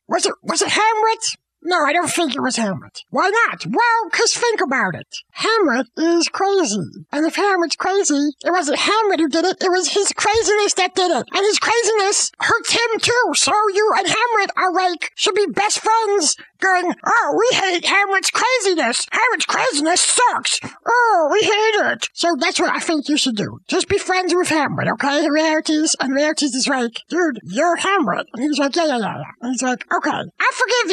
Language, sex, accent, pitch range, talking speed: English, male, American, 295-420 Hz, 200 wpm